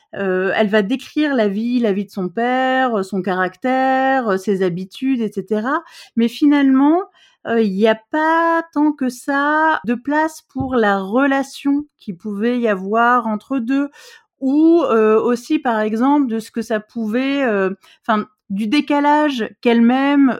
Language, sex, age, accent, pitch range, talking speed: French, female, 30-49, French, 200-260 Hz, 150 wpm